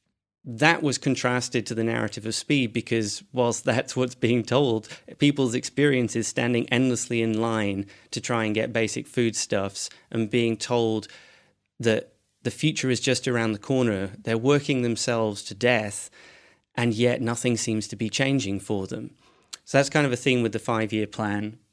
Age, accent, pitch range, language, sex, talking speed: 30-49, British, 110-130 Hz, English, male, 170 wpm